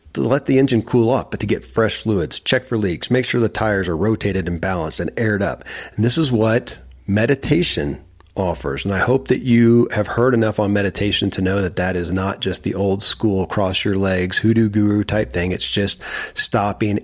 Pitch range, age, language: 95-115 Hz, 40-59, English